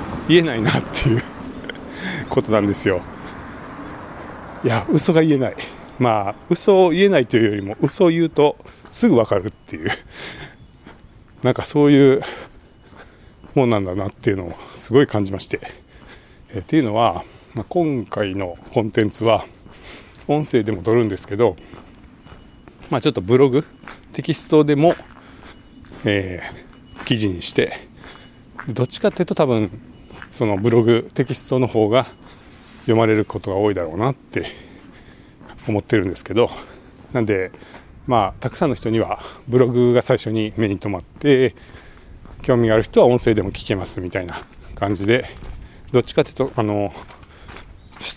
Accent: native